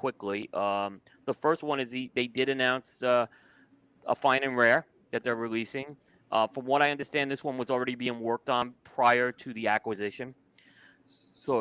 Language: English